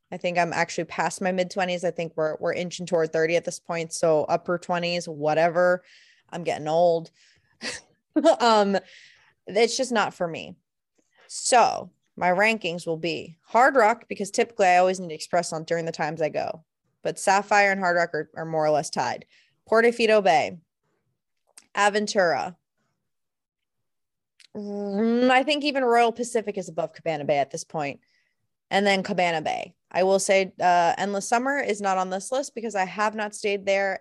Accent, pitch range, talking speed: American, 165-210 Hz, 175 wpm